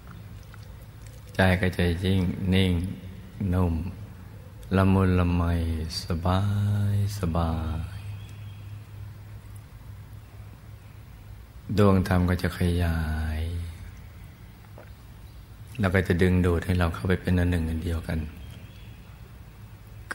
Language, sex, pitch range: Thai, male, 85-105 Hz